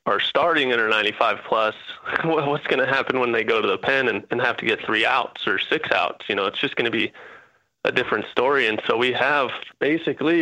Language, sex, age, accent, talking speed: English, male, 20-39, American, 235 wpm